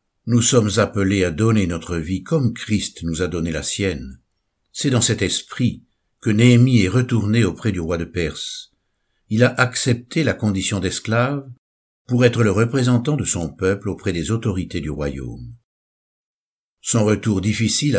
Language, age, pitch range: French, 60-79, 90-120 Hz